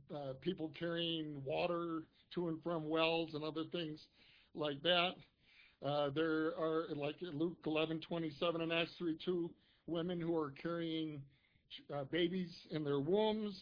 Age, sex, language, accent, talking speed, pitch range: 60-79, male, English, American, 140 wpm, 140-170 Hz